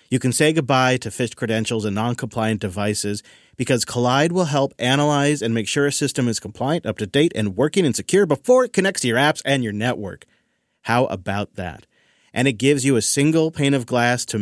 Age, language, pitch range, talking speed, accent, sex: 30-49, English, 110-150 Hz, 205 wpm, American, male